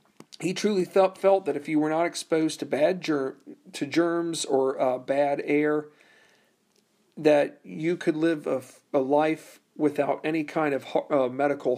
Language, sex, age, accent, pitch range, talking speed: English, male, 40-59, American, 145-170 Hz, 165 wpm